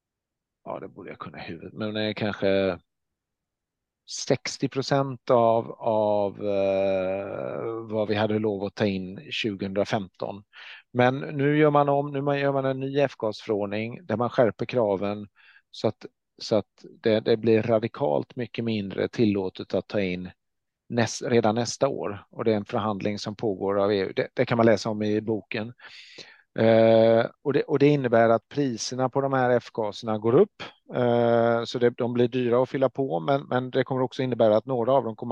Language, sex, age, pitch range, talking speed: Swedish, male, 40-59, 105-130 Hz, 180 wpm